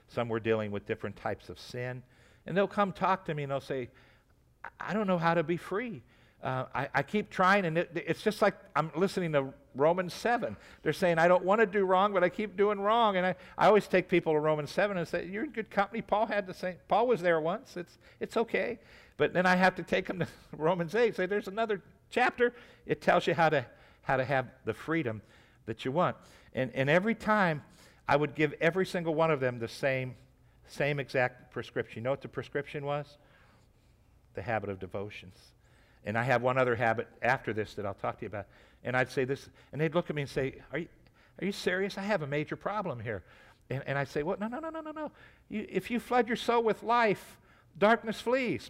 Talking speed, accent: 235 wpm, American